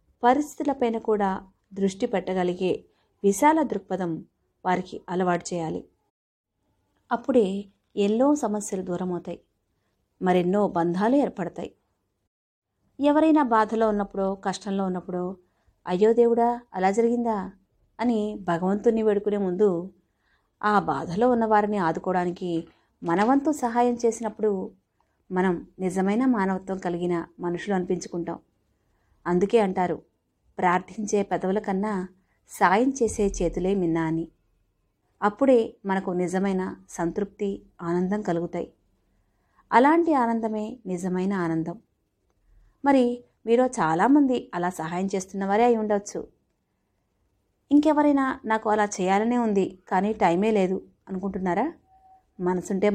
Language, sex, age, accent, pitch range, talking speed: Telugu, female, 30-49, native, 175-220 Hz, 90 wpm